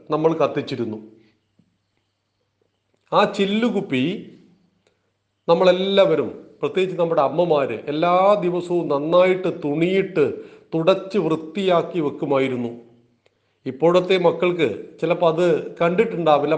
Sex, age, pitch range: male, 40-59, 145-200 Hz